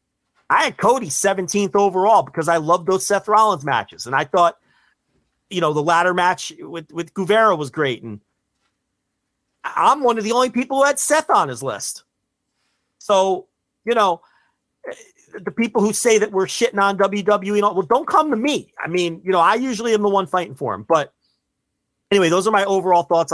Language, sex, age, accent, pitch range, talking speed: English, male, 40-59, American, 140-200 Hz, 190 wpm